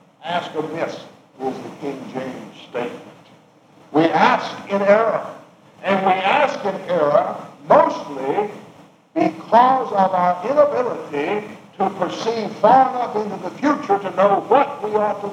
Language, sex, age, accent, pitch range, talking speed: English, male, 60-79, American, 155-205 Hz, 135 wpm